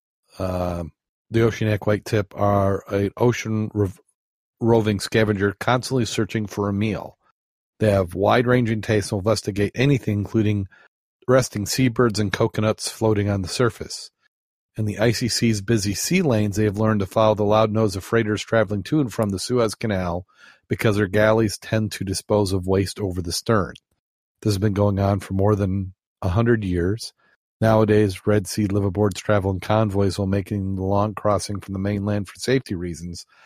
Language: English